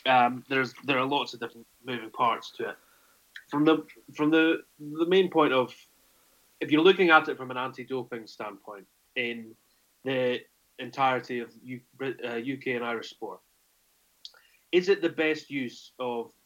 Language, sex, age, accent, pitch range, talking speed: English, male, 30-49, British, 120-150 Hz, 155 wpm